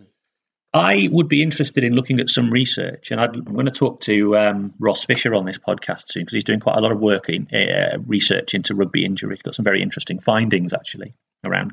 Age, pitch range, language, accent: 30-49, 105-135 Hz, English, British